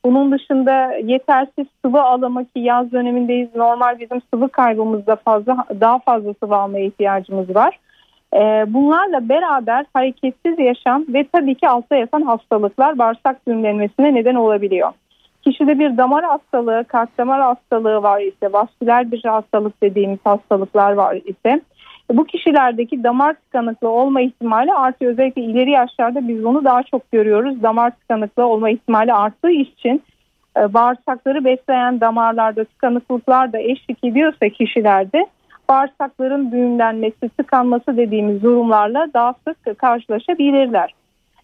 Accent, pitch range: native, 225-275 Hz